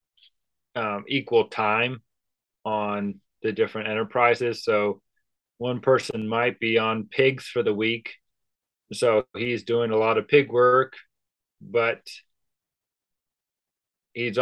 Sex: male